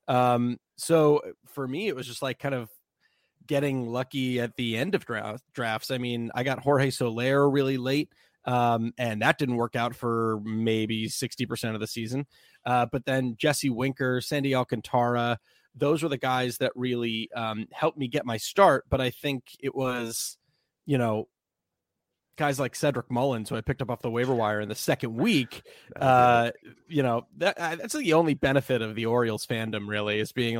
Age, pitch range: 30-49, 115-145 Hz